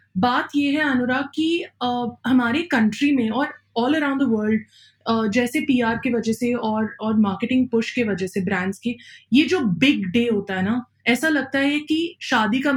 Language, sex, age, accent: Hindi, female, 20-39, native